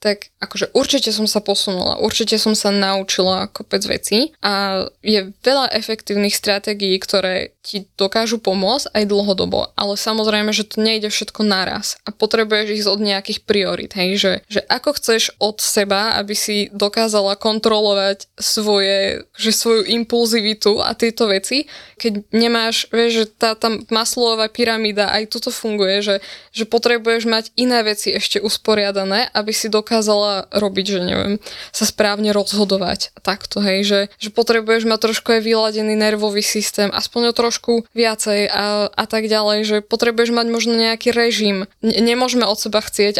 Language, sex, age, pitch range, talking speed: Slovak, female, 10-29, 200-225 Hz, 155 wpm